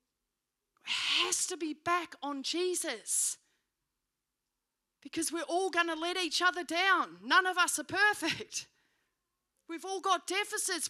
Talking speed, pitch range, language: 130 wpm, 300-365 Hz, English